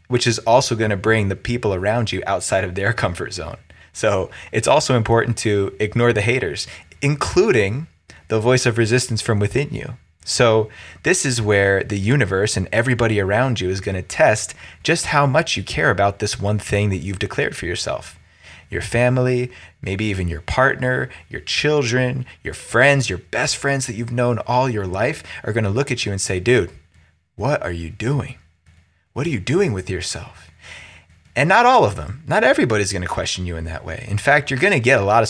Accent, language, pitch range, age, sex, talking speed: American, English, 90-125 Hz, 20-39, male, 195 wpm